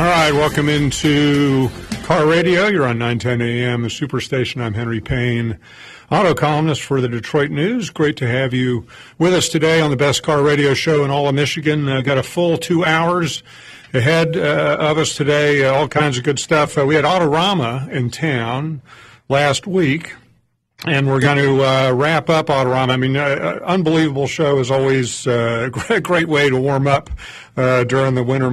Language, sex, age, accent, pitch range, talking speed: English, male, 50-69, American, 125-145 Hz, 185 wpm